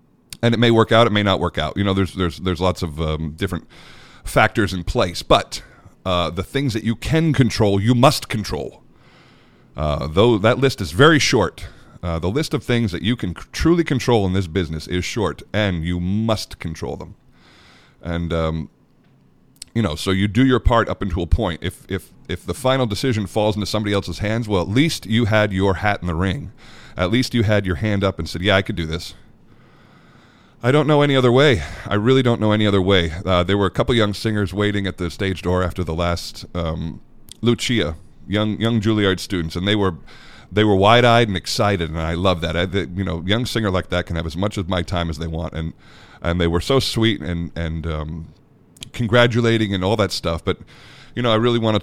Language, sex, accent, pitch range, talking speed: English, male, American, 85-115 Hz, 225 wpm